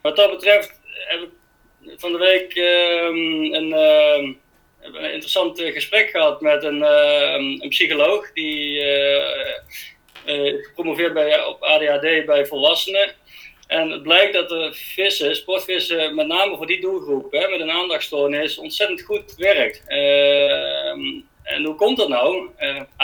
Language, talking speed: Dutch, 140 wpm